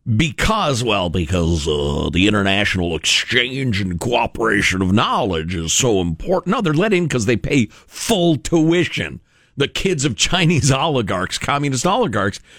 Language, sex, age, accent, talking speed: English, male, 50-69, American, 145 wpm